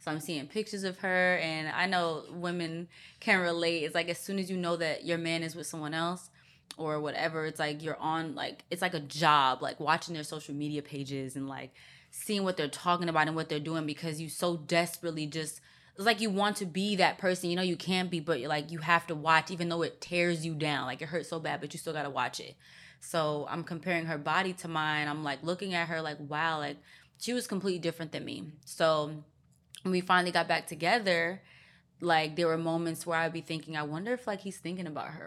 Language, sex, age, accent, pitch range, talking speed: English, female, 20-39, American, 150-175 Hz, 240 wpm